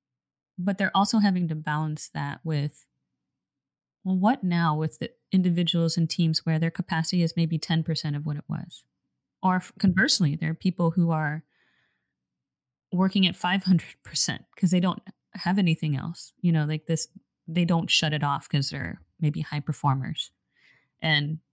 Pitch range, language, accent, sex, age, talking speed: 155-180 Hz, English, American, female, 30-49, 160 wpm